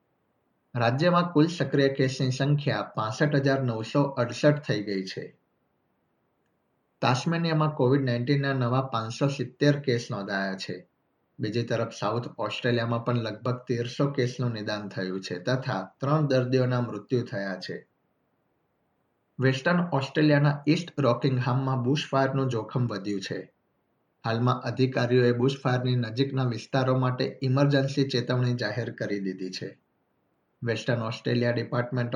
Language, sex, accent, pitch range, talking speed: Gujarati, male, native, 115-135 Hz, 110 wpm